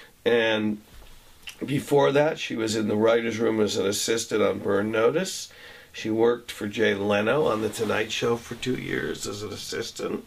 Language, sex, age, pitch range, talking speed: English, male, 50-69, 110-135 Hz, 175 wpm